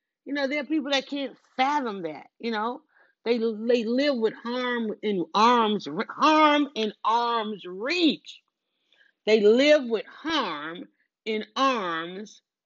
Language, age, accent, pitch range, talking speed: English, 40-59, American, 175-245 Hz, 135 wpm